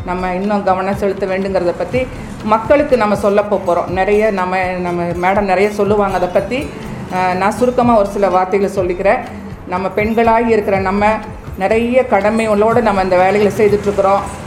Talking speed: 140 wpm